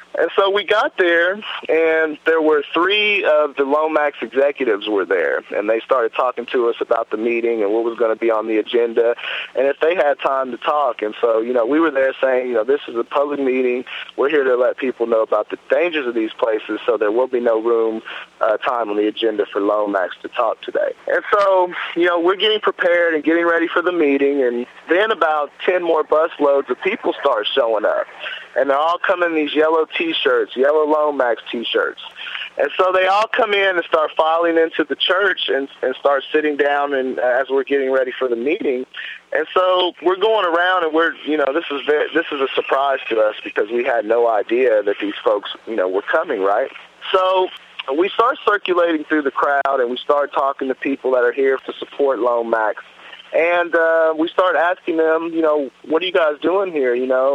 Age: 30-49